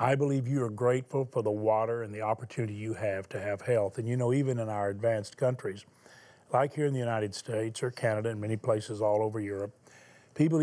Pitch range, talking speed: 115-140 Hz, 220 wpm